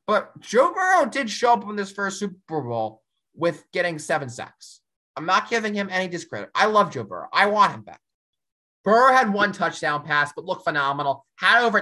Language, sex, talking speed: English, male, 200 wpm